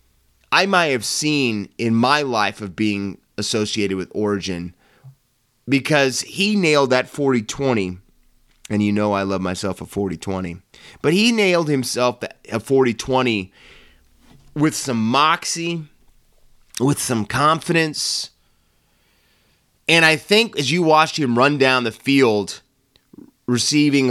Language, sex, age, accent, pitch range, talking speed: English, male, 30-49, American, 105-145 Hz, 120 wpm